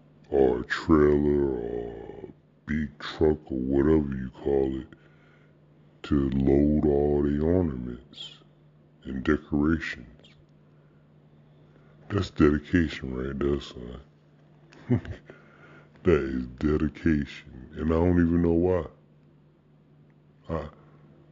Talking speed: 95 wpm